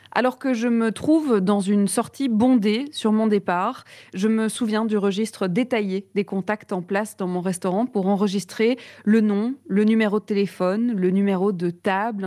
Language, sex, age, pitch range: French, female, 20-39, 195-230 Hz